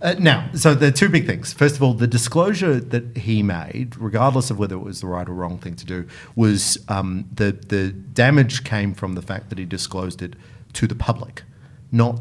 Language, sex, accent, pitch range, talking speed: English, male, Australian, 95-125 Hz, 220 wpm